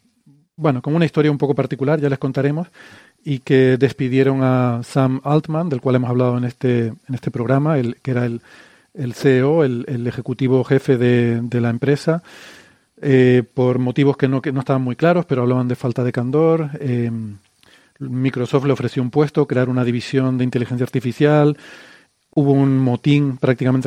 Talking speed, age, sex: 180 wpm, 40-59, male